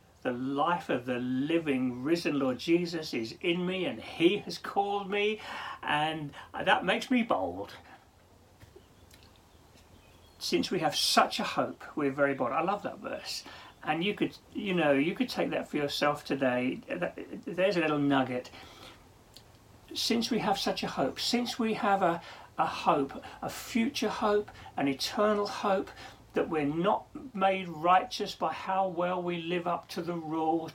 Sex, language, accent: male, English, British